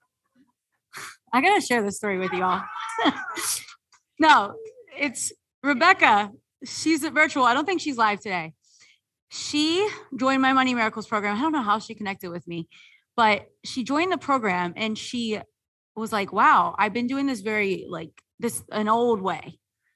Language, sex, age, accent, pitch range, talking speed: English, female, 30-49, American, 200-300 Hz, 165 wpm